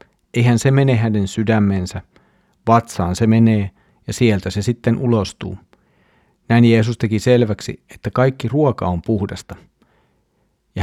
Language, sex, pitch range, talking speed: Finnish, male, 105-125 Hz, 125 wpm